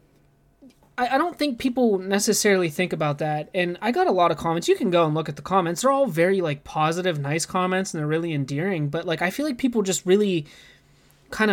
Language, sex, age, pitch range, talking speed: English, male, 20-39, 160-215 Hz, 225 wpm